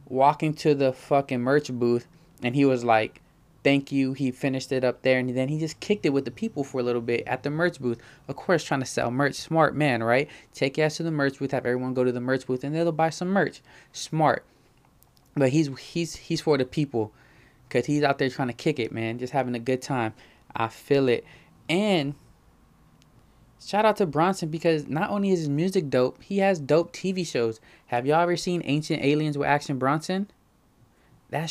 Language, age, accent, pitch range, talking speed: English, 20-39, American, 125-155 Hz, 215 wpm